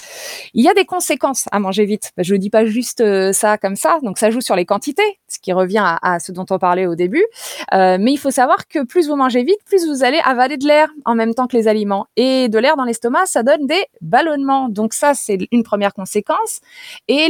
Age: 20-39